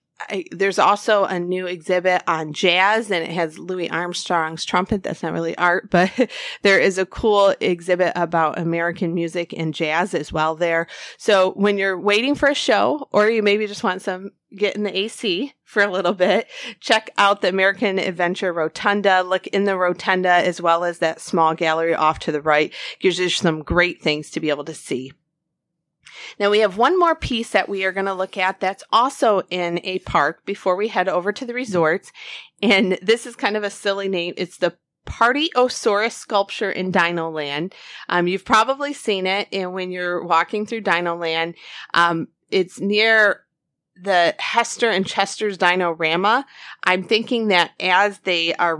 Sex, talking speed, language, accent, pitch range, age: female, 180 wpm, English, American, 170-205 Hz, 30-49